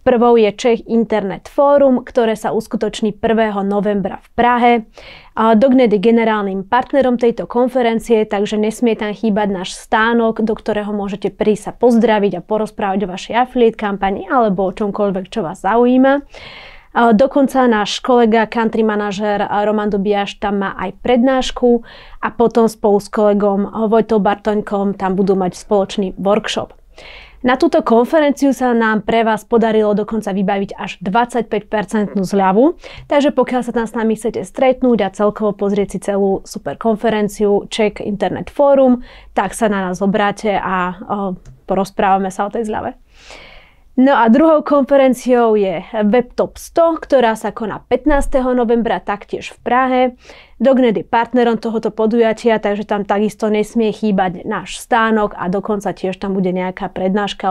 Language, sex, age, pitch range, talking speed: Slovak, female, 30-49, 200-240 Hz, 150 wpm